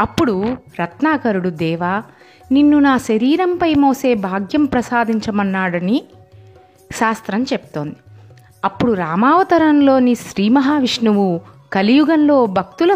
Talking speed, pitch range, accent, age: 80 wpm, 205-290 Hz, native, 30-49